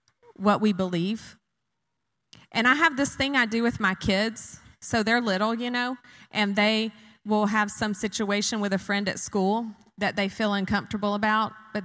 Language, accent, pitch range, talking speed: Russian, American, 195-260 Hz, 175 wpm